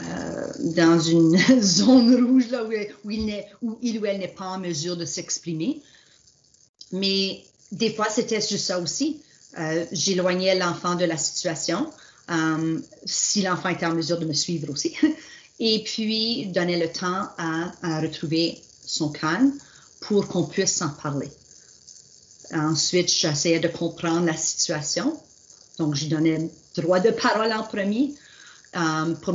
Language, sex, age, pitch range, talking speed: French, female, 40-59, 165-205 Hz, 150 wpm